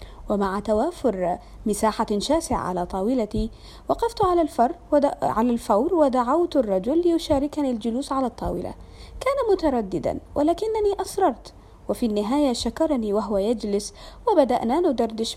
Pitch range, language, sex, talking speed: 210-305 Hz, Arabic, female, 105 wpm